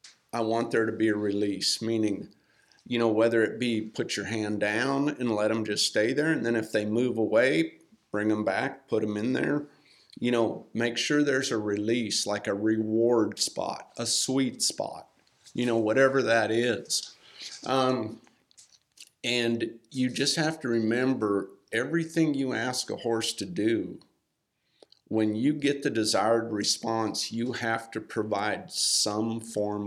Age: 50-69